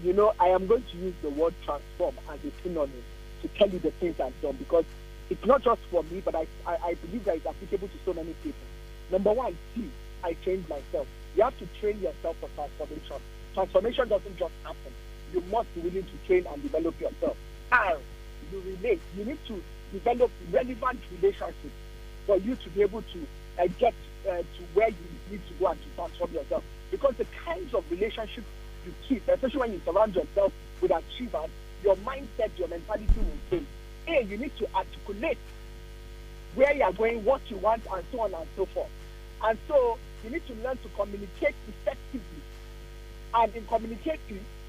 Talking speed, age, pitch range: 190 wpm, 50-69, 180-260 Hz